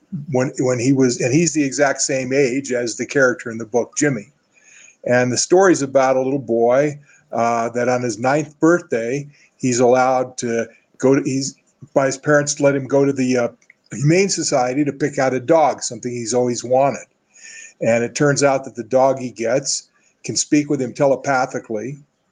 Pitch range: 125-145 Hz